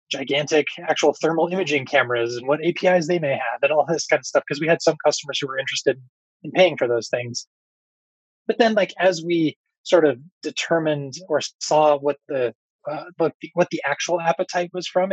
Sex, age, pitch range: male, 20-39, 135-165 Hz